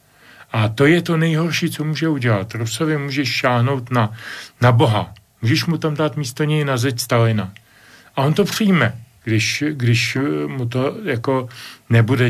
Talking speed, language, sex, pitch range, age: 160 wpm, Slovak, male, 110-135 Hz, 40-59